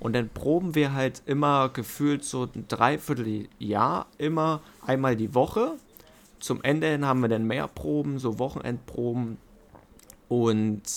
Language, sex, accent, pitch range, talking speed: German, male, German, 115-135 Hz, 130 wpm